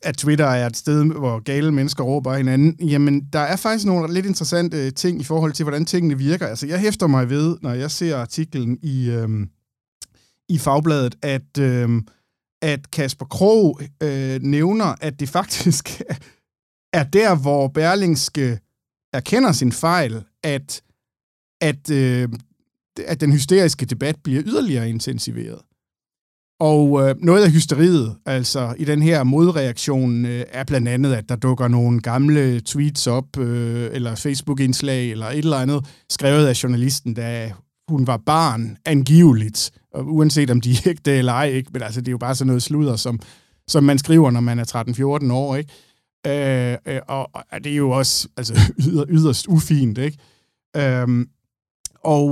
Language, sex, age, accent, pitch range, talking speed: Danish, male, 50-69, native, 125-155 Hz, 160 wpm